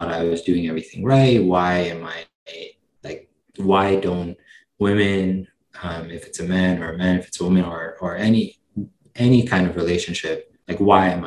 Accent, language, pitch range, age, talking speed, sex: American, English, 85-100 Hz, 20-39, 180 wpm, male